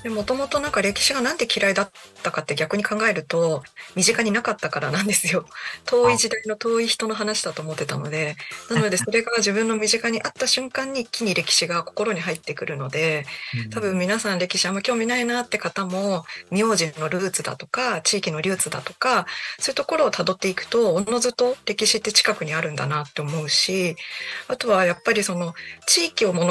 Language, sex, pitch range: Japanese, female, 165-230 Hz